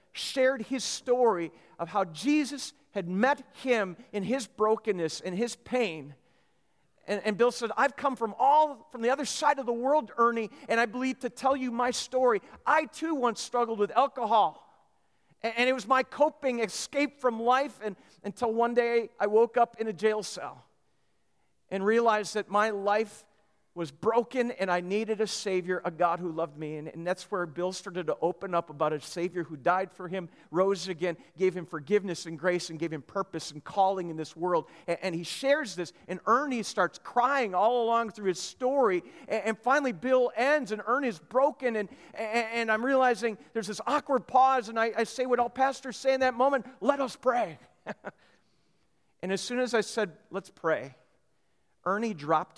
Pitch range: 185-255 Hz